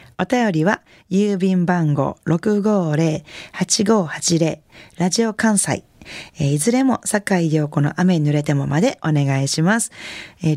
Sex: female